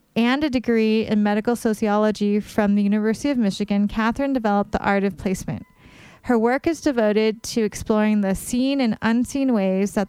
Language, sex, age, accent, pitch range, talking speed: English, female, 30-49, American, 200-230 Hz, 170 wpm